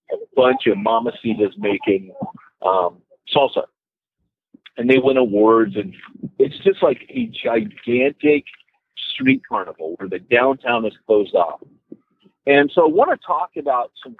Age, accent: 50-69, American